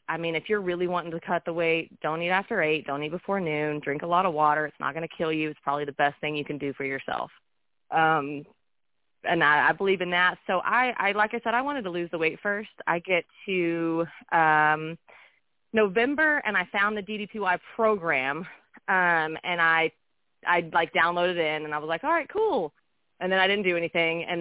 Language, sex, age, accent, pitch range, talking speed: English, female, 30-49, American, 155-190 Hz, 225 wpm